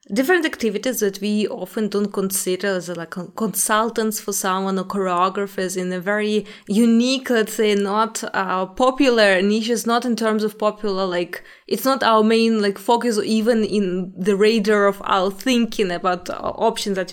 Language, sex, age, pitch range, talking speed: English, female, 20-39, 195-250 Hz, 165 wpm